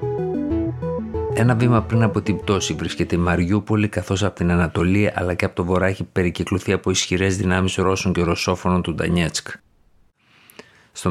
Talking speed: 155 wpm